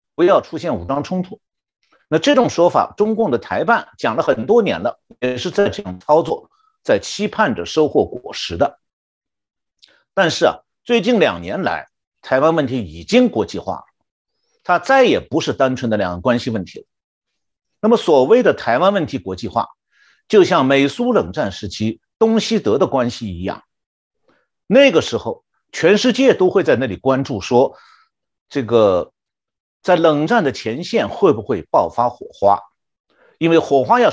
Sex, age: male, 50-69